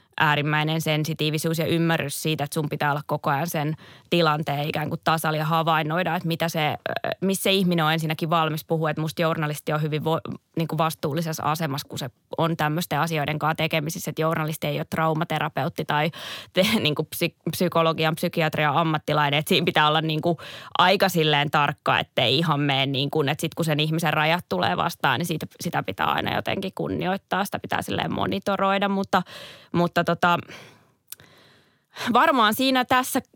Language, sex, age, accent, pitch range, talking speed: Finnish, female, 20-39, native, 155-175 Hz, 165 wpm